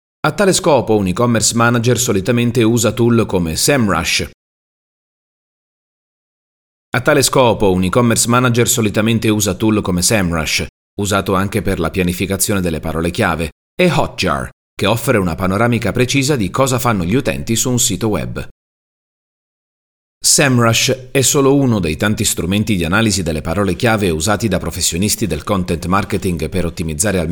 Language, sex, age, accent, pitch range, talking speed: Italian, male, 30-49, native, 90-120 Hz, 125 wpm